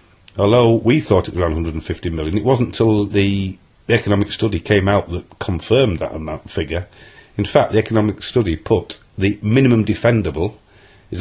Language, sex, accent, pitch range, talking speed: English, male, British, 95-115 Hz, 170 wpm